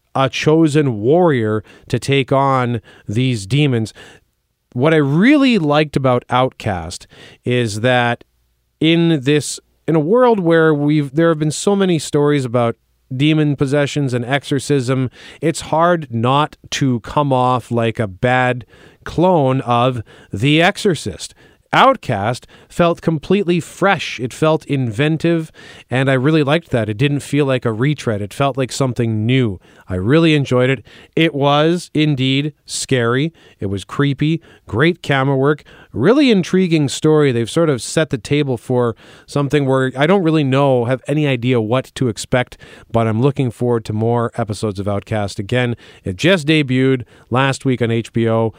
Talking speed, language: 150 wpm, English